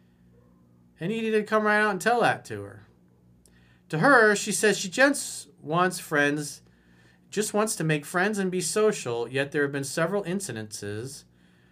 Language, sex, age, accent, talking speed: English, male, 40-59, American, 170 wpm